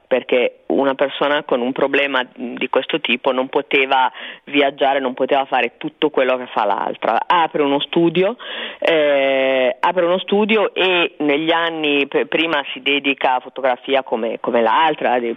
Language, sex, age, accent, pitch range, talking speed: Italian, female, 30-49, native, 130-160 Hz, 155 wpm